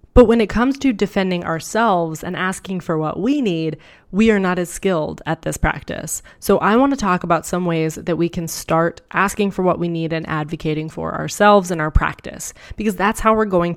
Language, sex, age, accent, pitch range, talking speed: English, female, 20-39, American, 165-200 Hz, 220 wpm